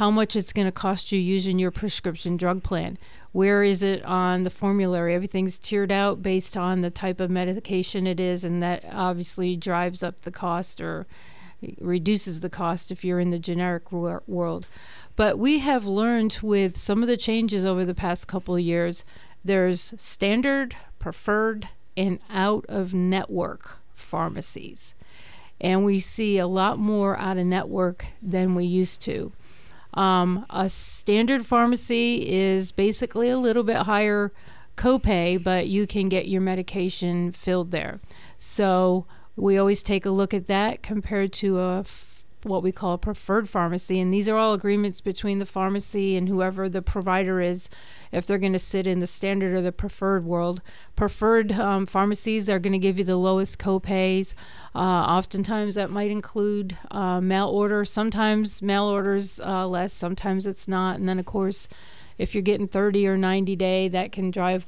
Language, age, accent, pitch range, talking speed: English, 40-59, American, 185-205 Hz, 165 wpm